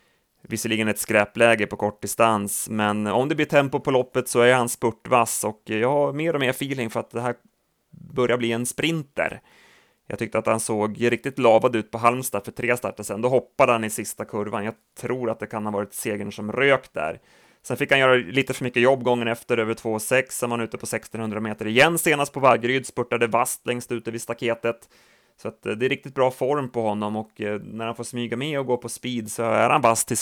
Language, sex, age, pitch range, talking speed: Swedish, male, 30-49, 110-130 Hz, 230 wpm